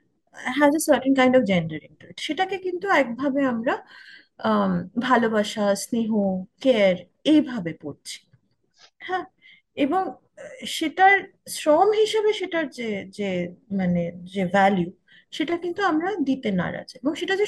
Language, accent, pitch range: Bengali, native, 215-325 Hz